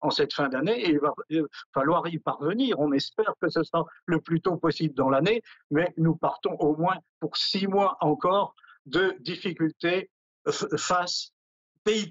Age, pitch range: 50-69, 150-190 Hz